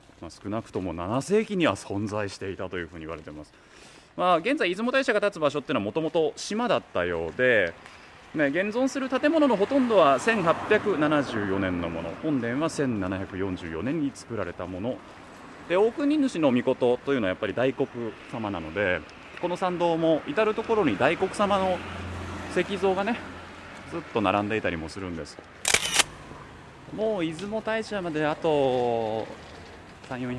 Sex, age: male, 20-39